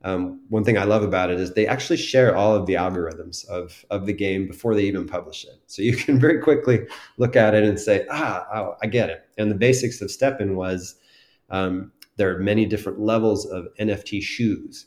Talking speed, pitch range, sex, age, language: 220 wpm, 95-120 Hz, male, 30-49, English